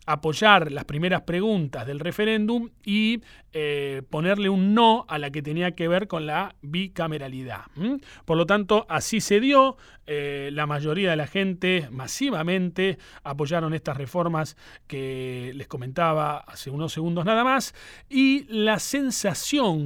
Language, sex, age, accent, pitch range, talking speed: Spanish, male, 30-49, Argentinian, 150-215 Hz, 140 wpm